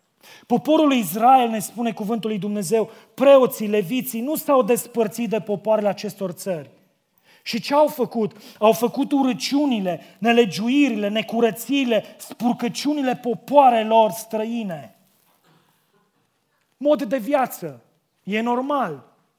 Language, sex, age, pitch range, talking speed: Romanian, male, 30-49, 210-260 Hz, 100 wpm